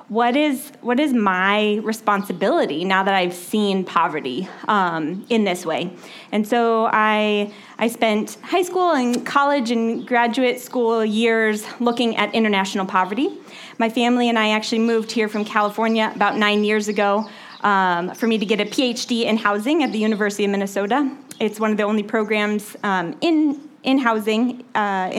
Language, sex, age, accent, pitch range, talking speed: English, female, 20-39, American, 205-255 Hz, 165 wpm